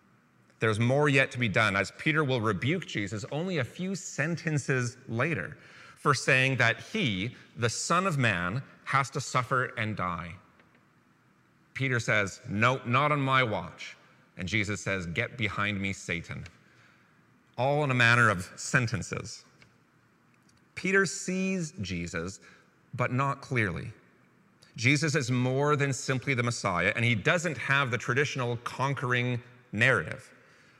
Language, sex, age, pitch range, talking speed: English, male, 30-49, 105-145 Hz, 135 wpm